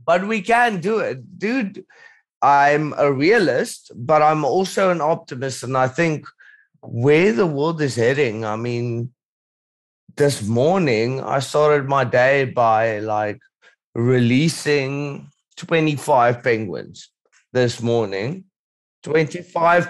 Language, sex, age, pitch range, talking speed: English, male, 30-49, 120-165 Hz, 115 wpm